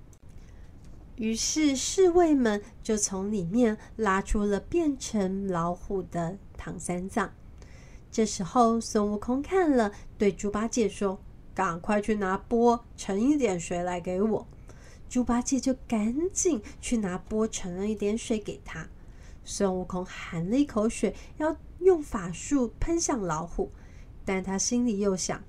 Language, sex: Chinese, female